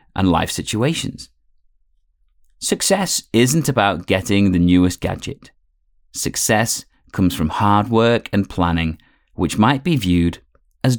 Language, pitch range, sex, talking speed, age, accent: English, 70-115 Hz, male, 120 wpm, 30-49, British